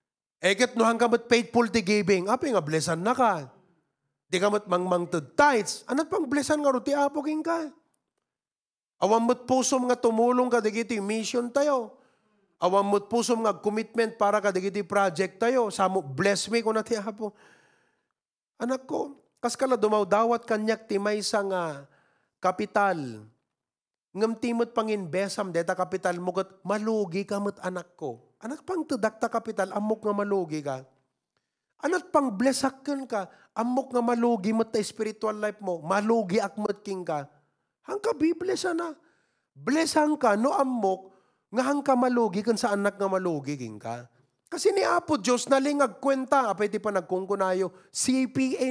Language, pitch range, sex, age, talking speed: English, 190-245 Hz, male, 30-49, 145 wpm